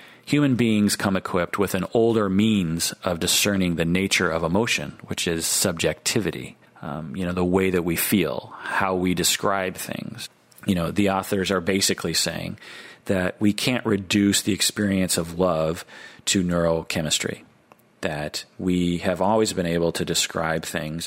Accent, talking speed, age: American, 155 wpm, 40-59